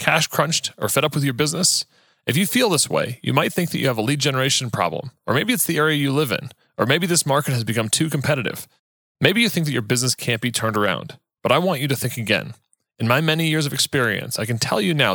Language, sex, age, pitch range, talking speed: English, male, 30-49, 115-150 Hz, 265 wpm